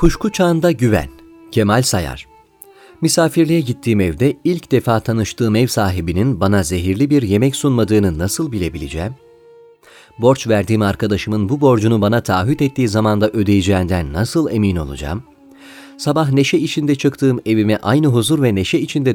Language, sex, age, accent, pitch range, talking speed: Turkish, male, 40-59, native, 105-145 Hz, 135 wpm